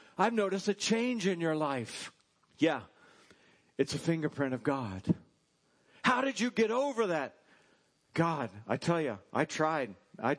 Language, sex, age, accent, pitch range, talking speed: English, male, 50-69, American, 140-175 Hz, 150 wpm